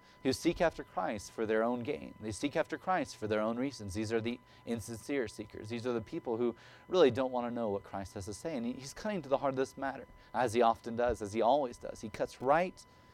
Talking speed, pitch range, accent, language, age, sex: 255 wpm, 125-170 Hz, American, English, 30-49, male